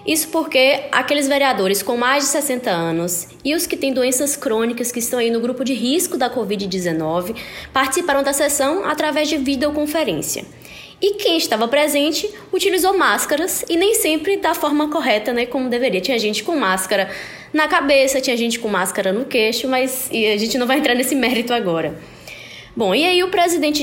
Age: 10-29